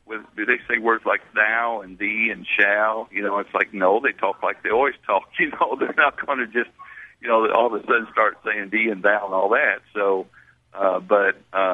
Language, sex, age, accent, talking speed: English, male, 60-79, American, 230 wpm